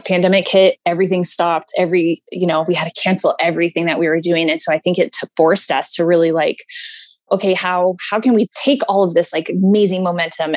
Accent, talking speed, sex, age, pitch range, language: American, 215 wpm, female, 20-39, 170-190 Hz, English